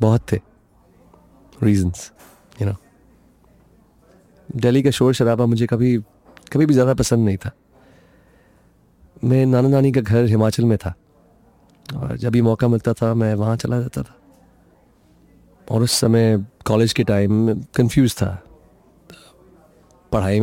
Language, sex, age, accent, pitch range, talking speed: Hindi, male, 30-49, native, 105-125 Hz, 130 wpm